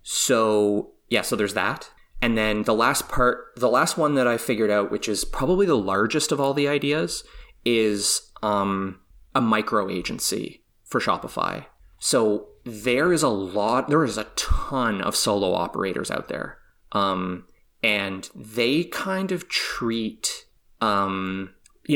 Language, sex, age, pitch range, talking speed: English, male, 20-39, 105-145 Hz, 150 wpm